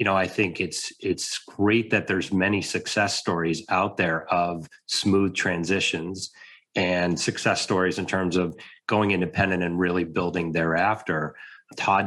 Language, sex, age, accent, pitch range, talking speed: English, male, 30-49, American, 90-105 Hz, 150 wpm